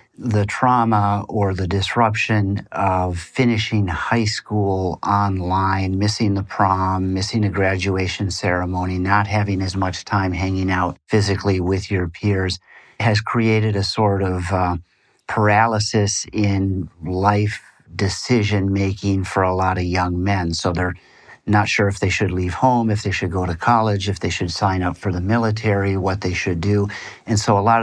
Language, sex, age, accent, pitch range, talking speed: English, male, 50-69, American, 90-105 Hz, 160 wpm